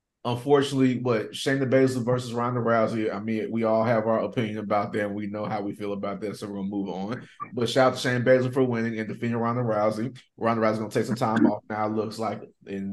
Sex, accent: male, American